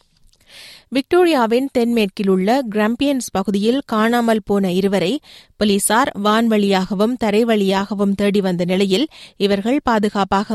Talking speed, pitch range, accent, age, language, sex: 90 wpm, 195-240 Hz, native, 30-49, Tamil, female